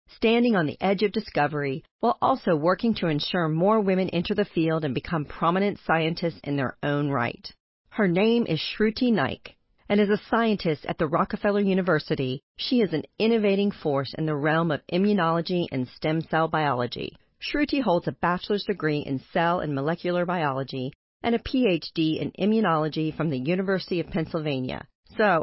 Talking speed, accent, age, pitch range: 170 wpm, American, 40-59, 150-205 Hz